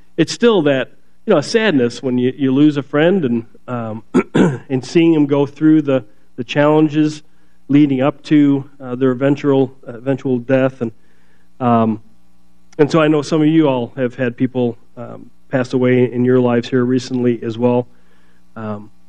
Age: 40-59